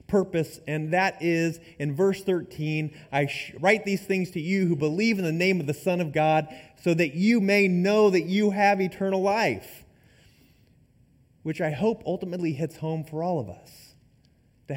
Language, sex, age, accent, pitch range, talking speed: English, male, 30-49, American, 135-175 Hz, 180 wpm